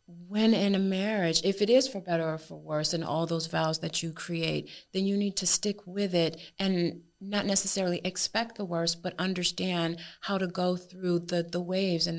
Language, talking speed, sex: English, 205 wpm, female